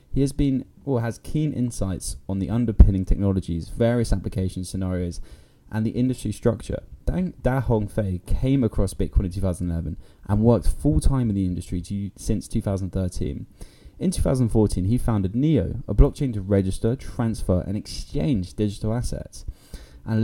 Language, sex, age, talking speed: English, male, 10-29, 155 wpm